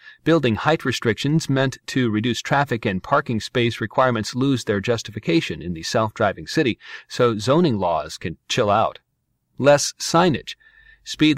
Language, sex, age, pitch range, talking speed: English, male, 40-59, 110-150 Hz, 140 wpm